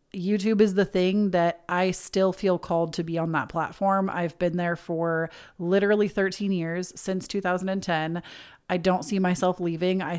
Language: English